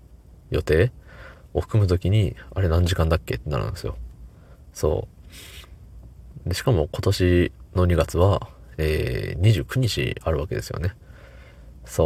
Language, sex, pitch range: Japanese, male, 70-95 Hz